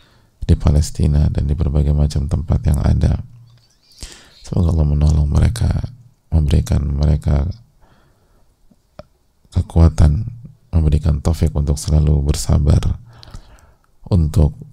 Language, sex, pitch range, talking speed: English, male, 75-105 Hz, 90 wpm